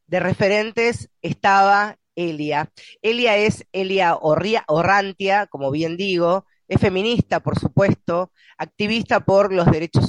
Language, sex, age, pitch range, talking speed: Spanish, female, 20-39, 175-215 Hz, 120 wpm